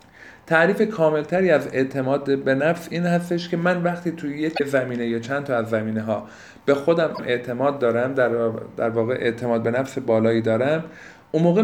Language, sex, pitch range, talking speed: Persian, male, 120-170 Hz, 175 wpm